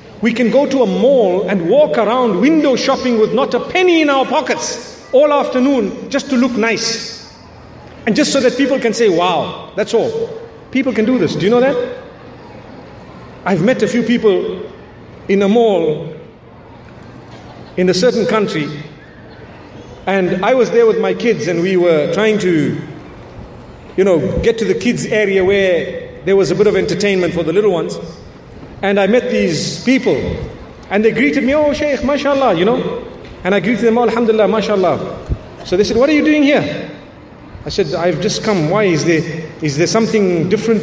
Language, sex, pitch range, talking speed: English, male, 180-260 Hz, 185 wpm